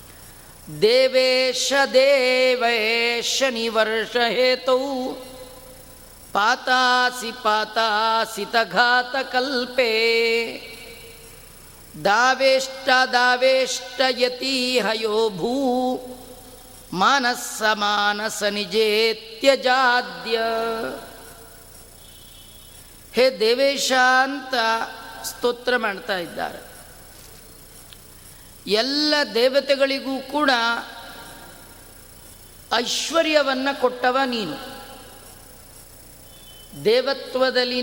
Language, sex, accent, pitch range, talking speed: Kannada, female, native, 230-270 Hz, 35 wpm